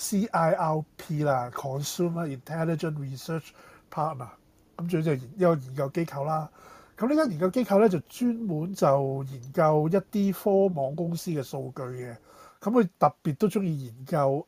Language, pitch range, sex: Chinese, 140-185 Hz, male